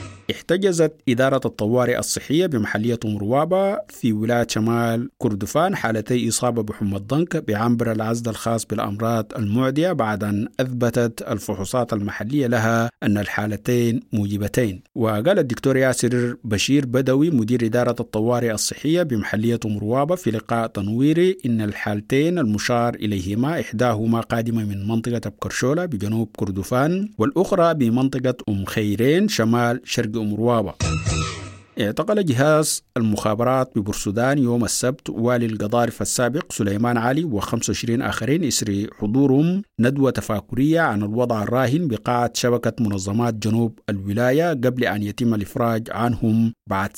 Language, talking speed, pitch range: English, 115 wpm, 105-130 Hz